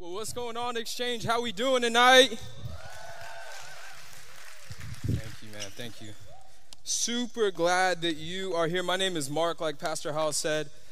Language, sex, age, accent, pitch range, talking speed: English, male, 20-39, American, 155-220 Hz, 155 wpm